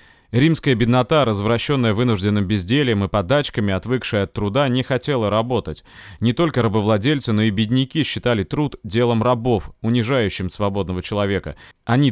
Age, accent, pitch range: 30-49, native, 105-130 Hz